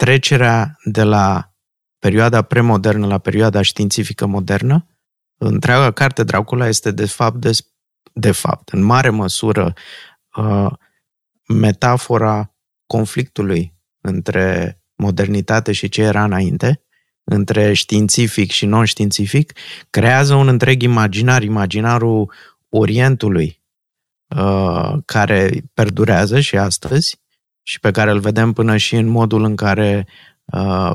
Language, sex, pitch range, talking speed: Romanian, male, 100-120 Hz, 105 wpm